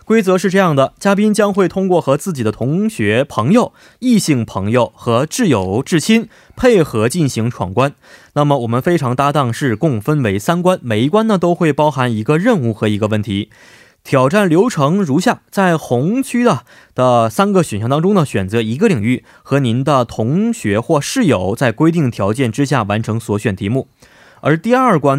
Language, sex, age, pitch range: Korean, male, 20-39, 110-175 Hz